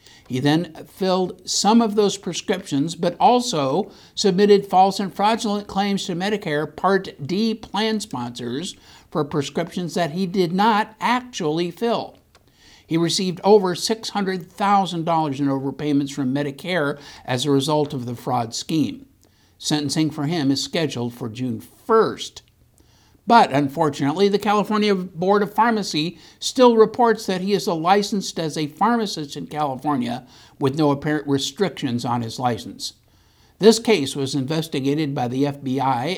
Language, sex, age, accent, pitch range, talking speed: English, male, 60-79, American, 135-195 Hz, 140 wpm